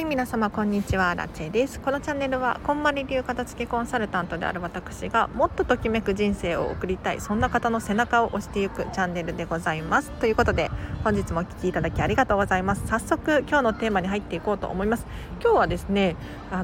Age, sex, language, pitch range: 40-59, female, Japanese, 190-270 Hz